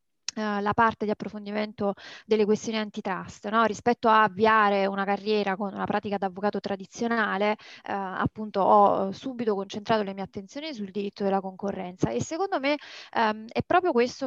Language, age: Italian, 20-39